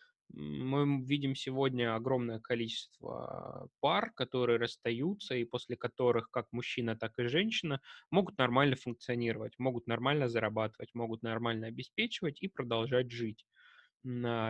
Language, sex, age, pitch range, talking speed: Russian, male, 20-39, 115-135 Hz, 115 wpm